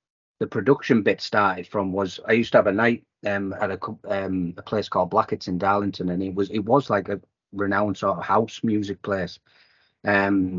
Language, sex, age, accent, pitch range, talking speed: English, male, 30-49, British, 95-115 Hz, 205 wpm